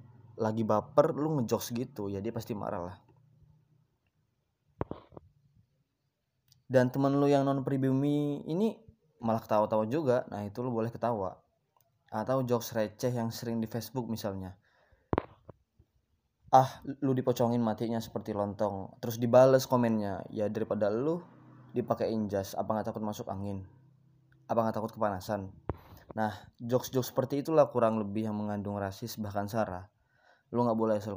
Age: 20-39